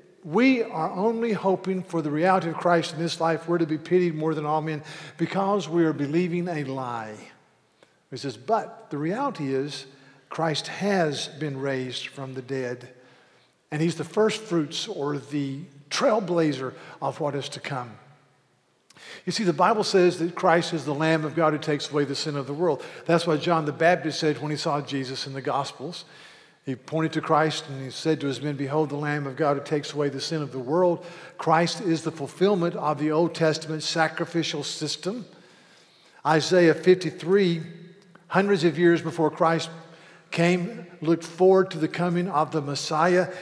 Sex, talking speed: male, 185 wpm